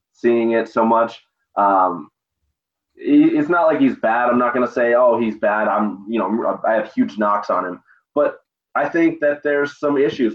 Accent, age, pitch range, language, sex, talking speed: American, 20-39, 110-130 Hz, English, male, 190 wpm